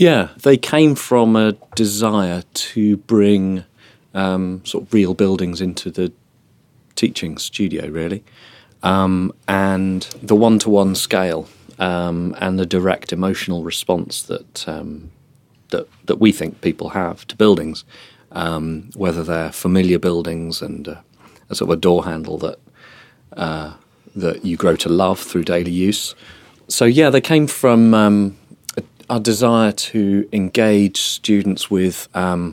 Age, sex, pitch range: 40-59, male, 85-105 Hz